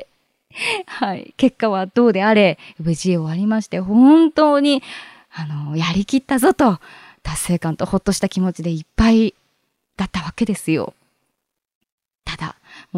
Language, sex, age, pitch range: Japanese, female, 20-39, 160-235 Hz